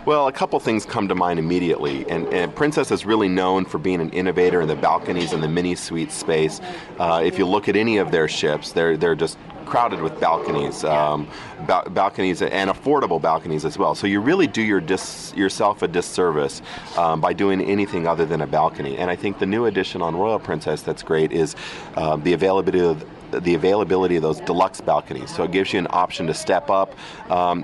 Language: English